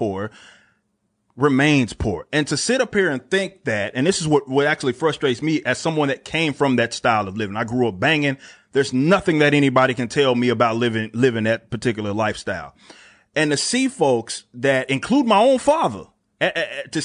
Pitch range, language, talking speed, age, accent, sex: 130-175 Hz, English, 195 wpm, 30-49, American, male